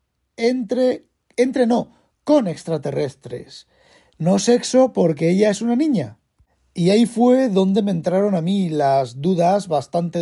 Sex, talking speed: male, 135 wpm